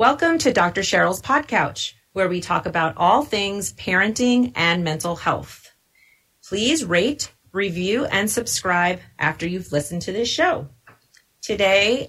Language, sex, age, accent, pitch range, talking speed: English, female, 30-49, American, 160-205 Hz, 135 wpm